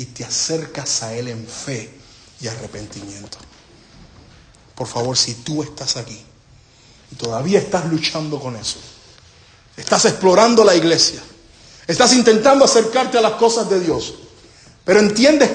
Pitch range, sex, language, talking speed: 130-210 Hz, male, English, 135 wpm